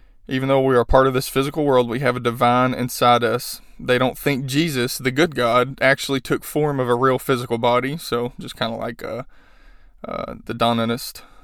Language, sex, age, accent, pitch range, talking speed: English, male, 20-39, American, 120-135 Hz, 205 wpm